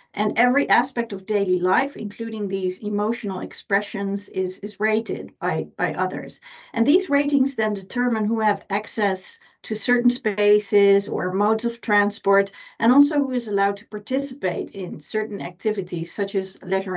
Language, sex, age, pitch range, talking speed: English, female, 40-59, 195-235 Hz, 155 wpm